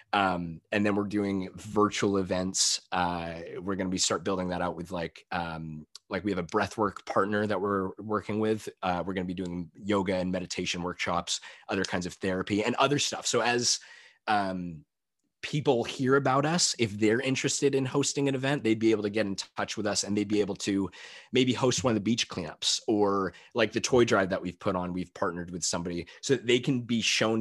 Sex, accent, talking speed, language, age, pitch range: male, American, 220 wpm, English, 30-49, 95-115 Hz